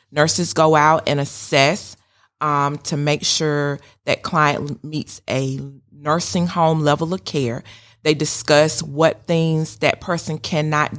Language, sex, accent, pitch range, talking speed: English, female, American, 140-160 Hz, 135 wpm